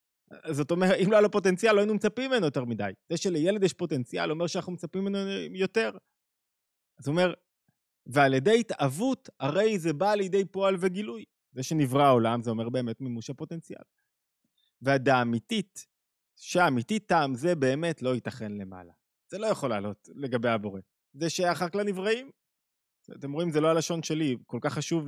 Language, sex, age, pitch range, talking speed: Hebrew, male, 20-39, 140-195 Hz, 165 wpm